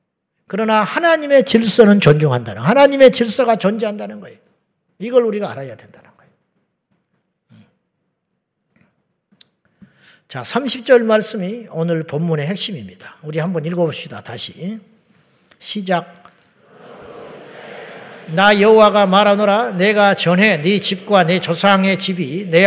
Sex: male